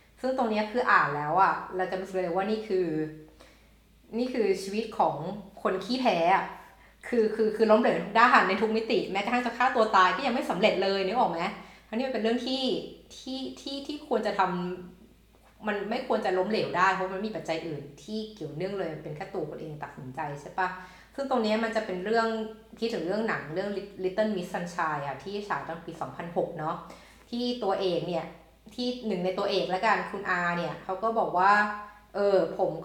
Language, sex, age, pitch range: Thai, female, 20-39, 180-220 Hz